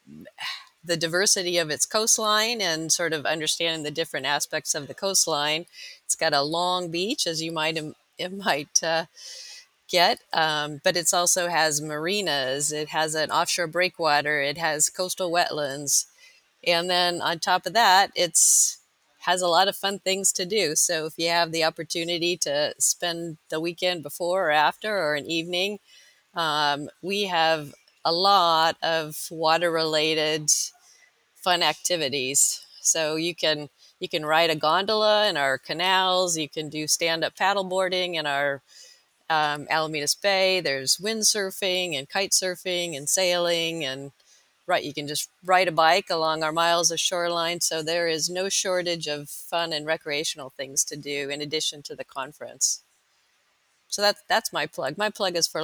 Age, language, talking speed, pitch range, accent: 40-59, English, 165 wpm, 155-185 Hz, American